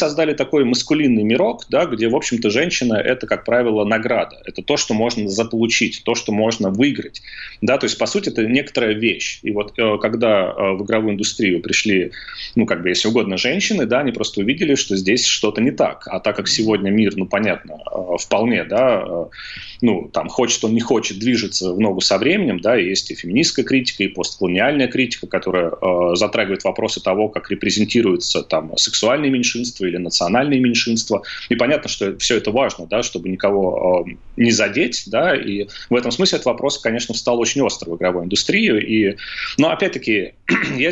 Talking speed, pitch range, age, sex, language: 180 wpm, 100-125 Hz, 30-49, male, Russian